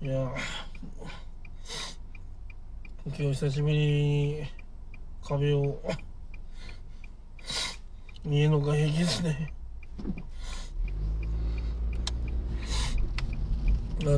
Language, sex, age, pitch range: Japanese, male, 20-39, 90-145 Hz